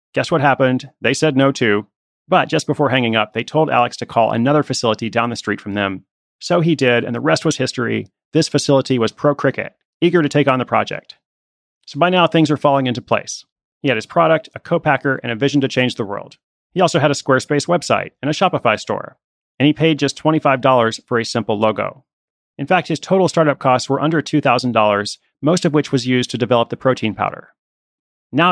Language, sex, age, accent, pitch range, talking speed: English, male, 30-49, American, 120-150 Hz, 215 wpm